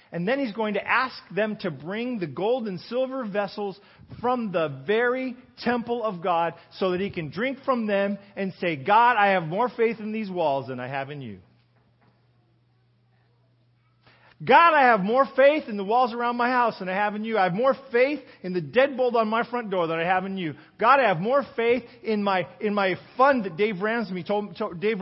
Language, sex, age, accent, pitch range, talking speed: English, male, 40-59, American, 160-220 Hz, 200 wpm